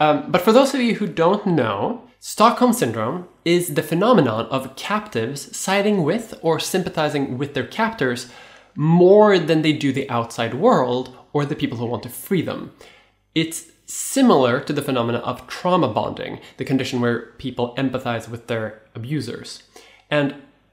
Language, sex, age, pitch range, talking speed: English, male, 20-39, 120-175 Hz, 160 wpm